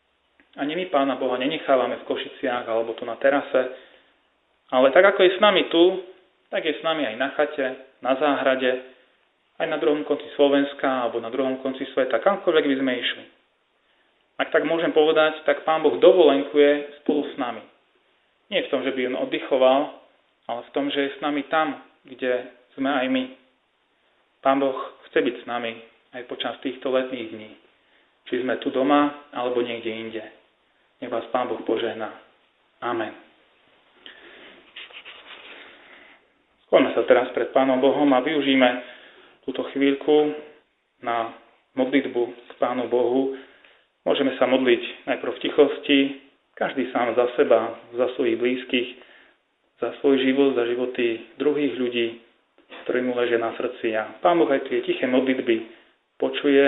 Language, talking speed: Slovak, 150 wpm